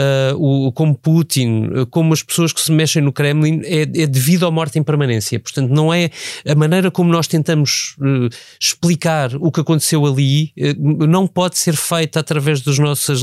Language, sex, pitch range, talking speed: Portuguese, male, 130-155 Hz, 190 wpm